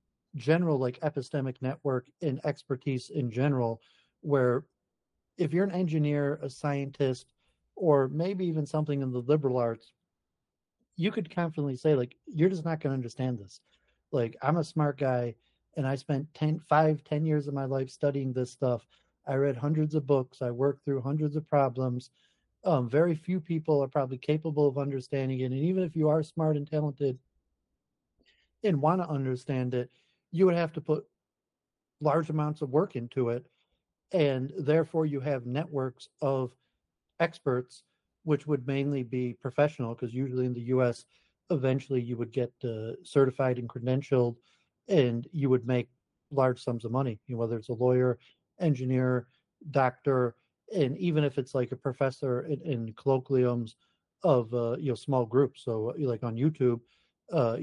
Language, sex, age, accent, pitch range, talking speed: English, male, 40-59, American, 125-150 Hz, 165 wpm